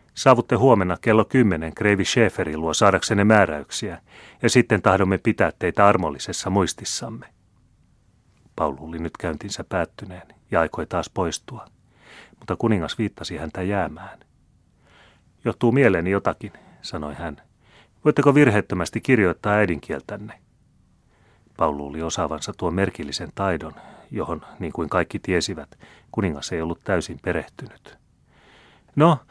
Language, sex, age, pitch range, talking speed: Finnish, male, 30-49, 85-115 Hz, 115 wpm